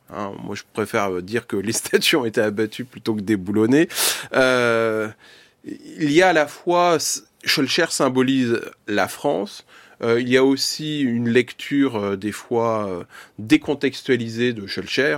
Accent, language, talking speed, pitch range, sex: French, French, 155 wpm, 105-135 Hz, male